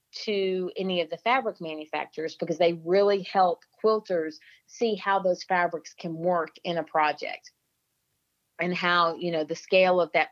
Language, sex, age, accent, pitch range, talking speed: English, female, 40-59, American, 165-195 Hz, 165 wpm